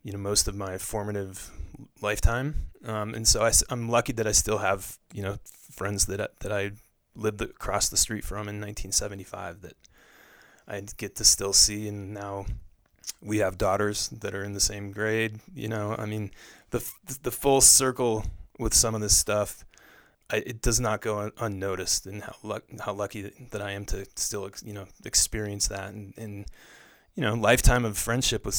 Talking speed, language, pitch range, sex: 190 wpm, English, 100-115 Hz, male